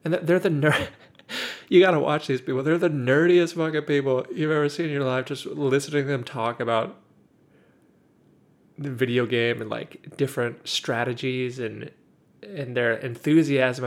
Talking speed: 165 wpm